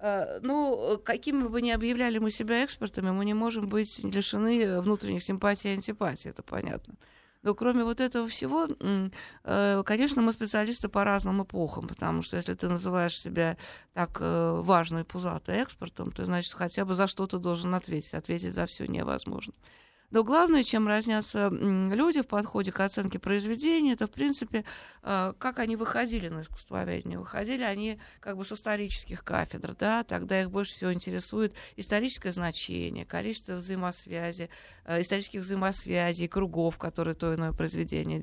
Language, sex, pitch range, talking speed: Russian, female, 175-225 Hz, 150 wpm